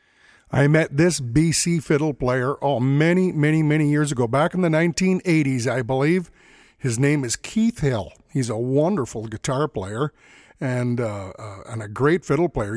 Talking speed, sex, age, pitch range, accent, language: 175 wpm, male, 50-69, 130-175 Hz, American, English